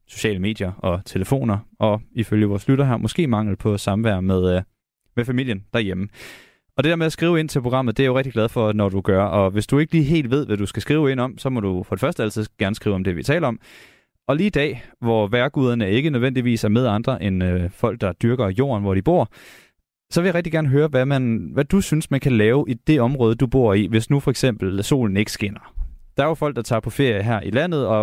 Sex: male